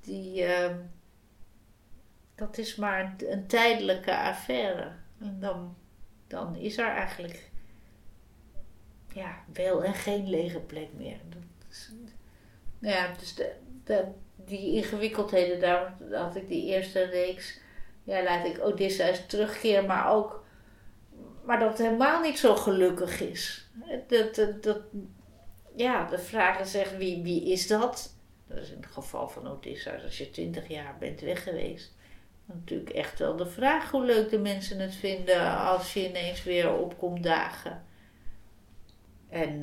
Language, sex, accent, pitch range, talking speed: Dutch, female, Dutch, 135-205 Hz, 135 wpm